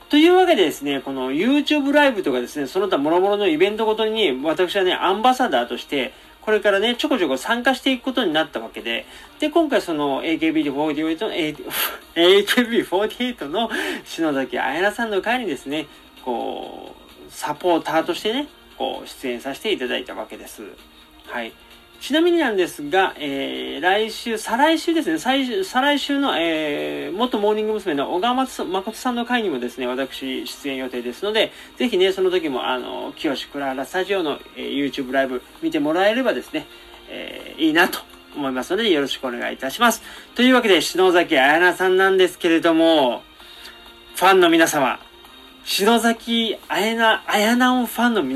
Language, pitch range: Japanese, 155-255 Hz